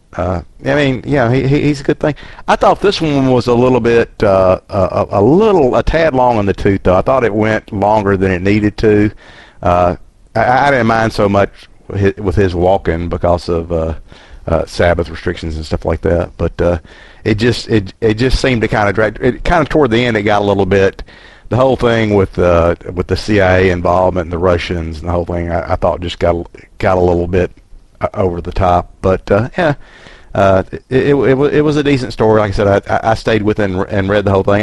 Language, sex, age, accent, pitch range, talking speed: English, male, 50-69, American, 90-110 Hz, 230 wpm